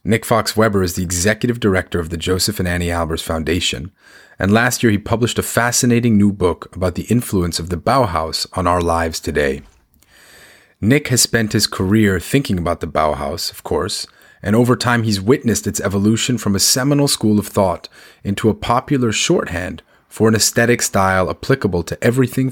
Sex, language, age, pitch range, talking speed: male, English, 30-49, 90-115 Hz, 180 wpm